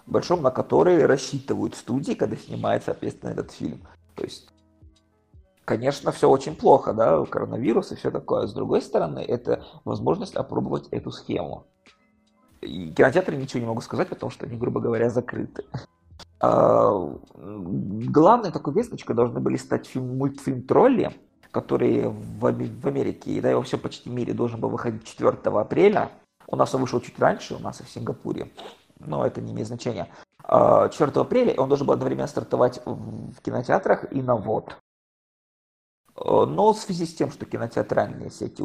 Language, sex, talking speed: Russian, male, 155 wpm